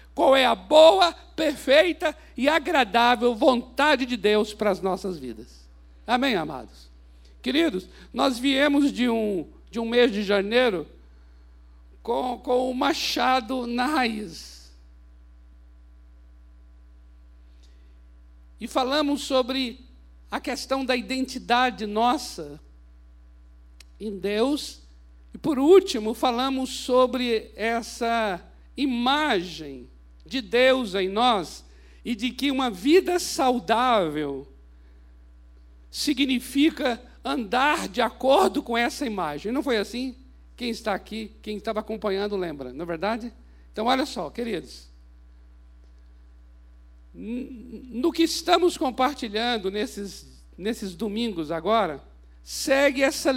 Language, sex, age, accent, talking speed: Portuguese, male, 60-79, Brazilian, 105 wpm